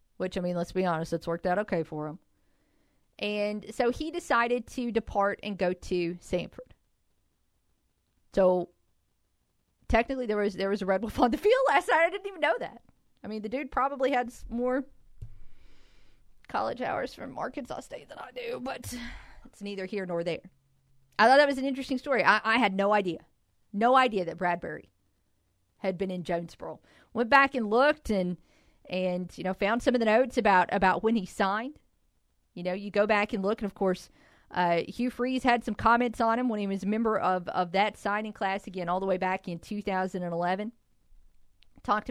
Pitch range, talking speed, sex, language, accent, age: 180-240 Hz, 195 wpm, female, English, American, 40-59